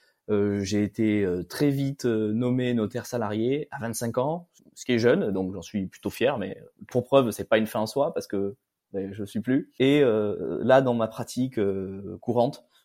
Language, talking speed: French, 180 wpm